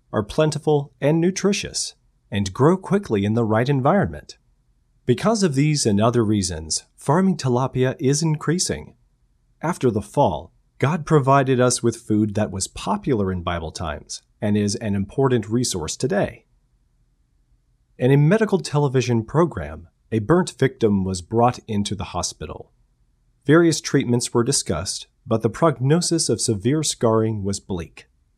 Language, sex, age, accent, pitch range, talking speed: English, male, 30-49, American, 105-145 Hz, 140 wpm